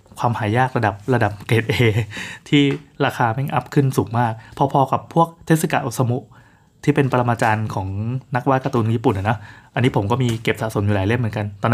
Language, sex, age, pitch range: Thai, male, 20-39, 115-145 Hz